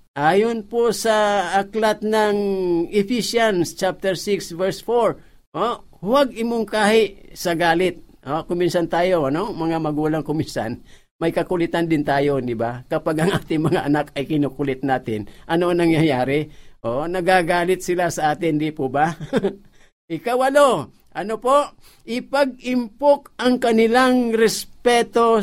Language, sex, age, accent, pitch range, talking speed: Filipino, male, 50-69, native, 145-215 Hz, 130 wpm